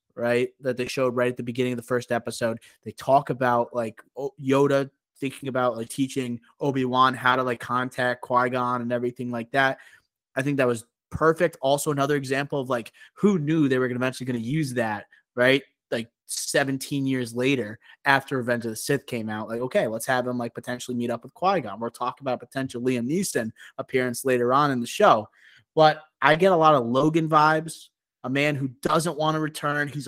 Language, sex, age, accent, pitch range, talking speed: English, male, 20-39, American, 125-155 Hz, 210 wpm